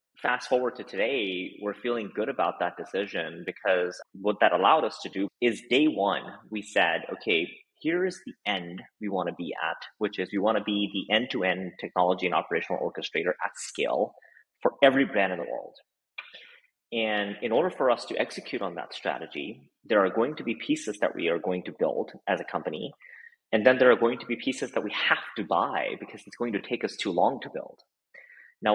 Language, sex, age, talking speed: English, male, 30-49, 210 wpm